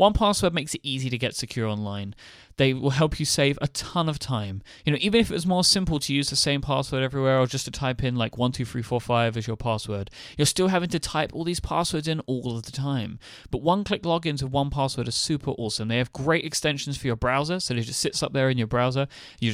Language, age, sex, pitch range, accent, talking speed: English, 30-49, male, 110-140 Hz, British, 265 wpm